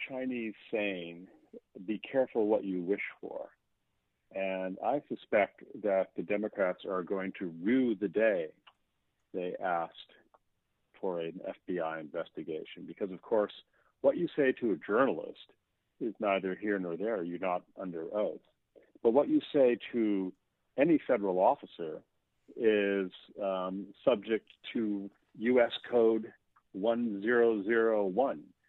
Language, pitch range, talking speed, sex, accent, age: English, 90-110 Hz, 125 wpm, male, American, 50-69